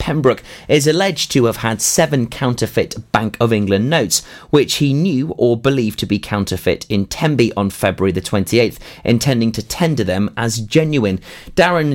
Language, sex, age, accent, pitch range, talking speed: English, male, 30-49, British, 105-150 Hz, 165 wpm